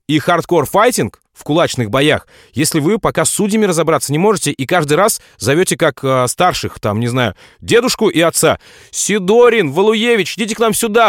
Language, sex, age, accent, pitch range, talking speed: Russian, male, 30-49, native, 140-210 Hz, 170 wpm